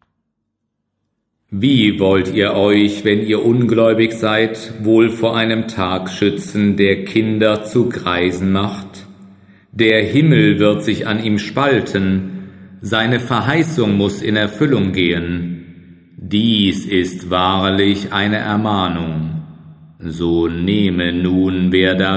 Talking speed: 110 wpm